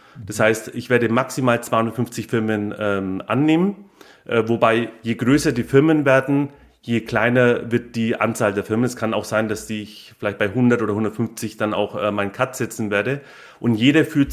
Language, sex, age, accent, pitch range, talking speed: German, male, 30-49, German, 115-130 Hz, 185 wpm